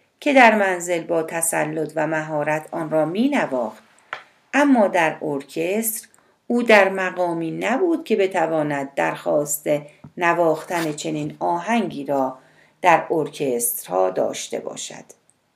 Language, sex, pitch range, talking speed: Persian, female, 150-205 Hz, 110 wpm